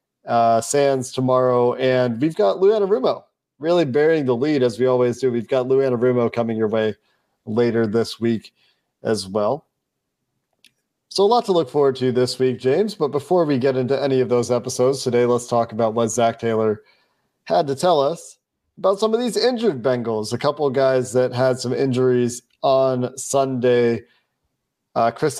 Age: 40-59